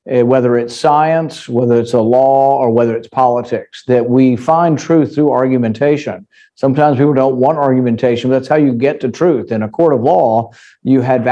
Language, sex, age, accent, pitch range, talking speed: English, male, 50-69, American, 120-145 Hz, 190 wpm